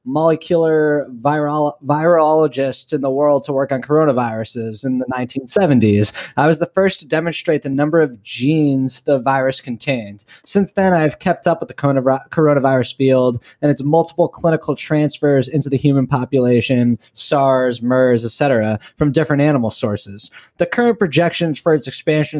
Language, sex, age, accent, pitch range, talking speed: English, male, 20-39, American, 135-165 Hz, 150 wpm